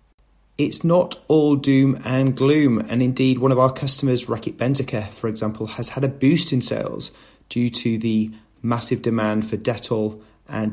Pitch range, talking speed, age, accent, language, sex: 110-130 Hz, 170 wpm, 30-49, British, English, male